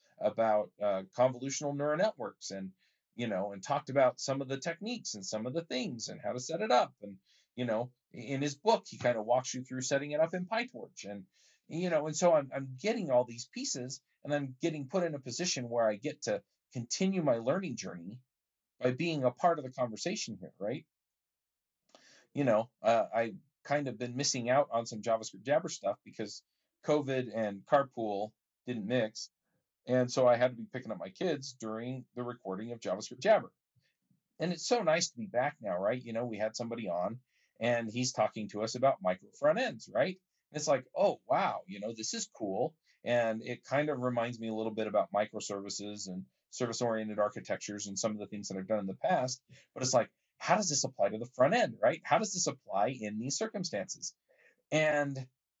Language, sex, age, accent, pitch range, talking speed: English, male, 40-59, American, 110-150 Hz, 210 wpm